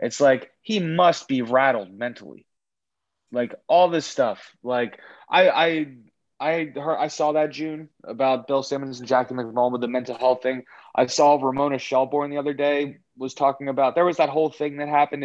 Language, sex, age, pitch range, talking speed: English, male, 20-39, 115-140 Hz, 190 wpm